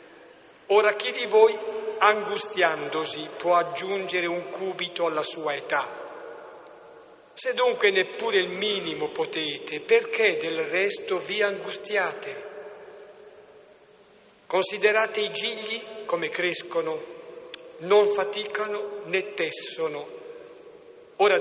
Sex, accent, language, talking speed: male, native, Italian, 95 wpm